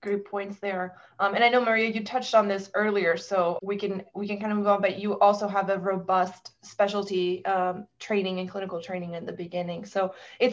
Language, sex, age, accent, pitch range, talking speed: English, female, 20-39, American, 185-230 Hz, 220 wpm